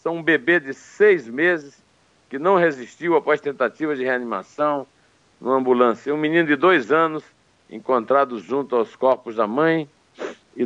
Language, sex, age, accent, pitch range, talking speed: Portuguese, male, 60-79, Brazilian, 120-170 Hz, 160 wpm